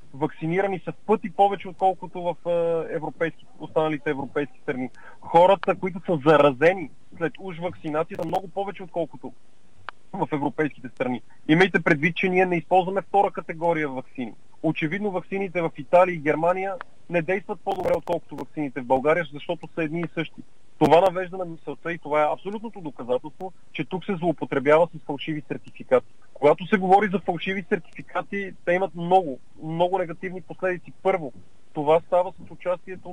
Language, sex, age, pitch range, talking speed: Bulgarian, male, 30-49, 155-190 Hz, 155 wpm